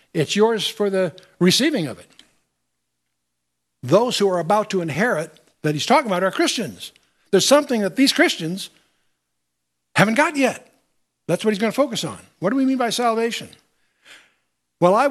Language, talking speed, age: English, 165 wpm, 60-79